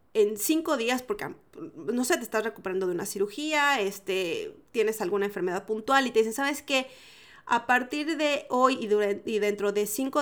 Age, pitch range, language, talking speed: 30-49, 215-280 Hz, Spanish, 190 wpm